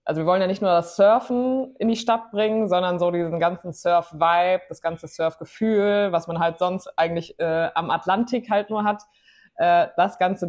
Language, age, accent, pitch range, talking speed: German, 20-39, German, 160-190 Hz, 195 wpm